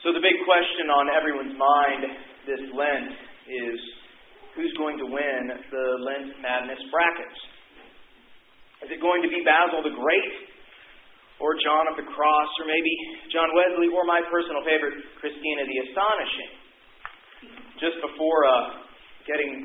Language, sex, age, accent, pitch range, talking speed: English, male, 40-59, American, 140-170 Hz, 140 wpm